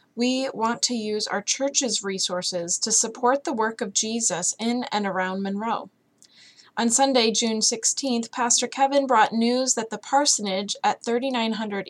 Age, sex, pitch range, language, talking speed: 20-39, female, 205-240 Hz, English, 150 wpm